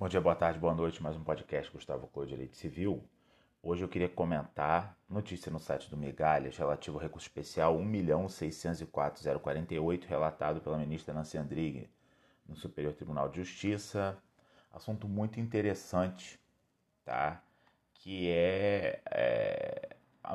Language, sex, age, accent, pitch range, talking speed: Portuguese, male, 30-49, Brazilian, 80-95 Hz, 135 wpm